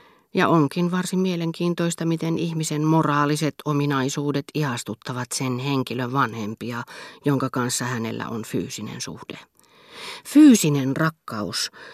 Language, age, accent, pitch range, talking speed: Finnish, 40-59, native, 120-155 Hz, 100 wpm